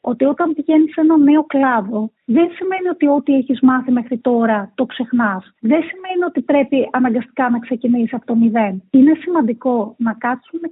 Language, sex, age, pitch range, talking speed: Greek, female, 30-49, 245-305 Hz, 175 wpm